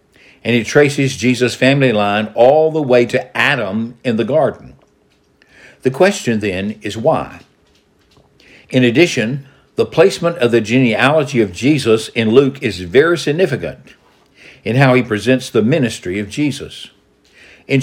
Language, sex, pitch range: English, male, 110-140 Hz